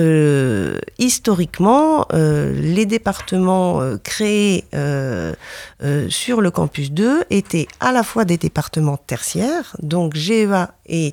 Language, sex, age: French, female, 40-59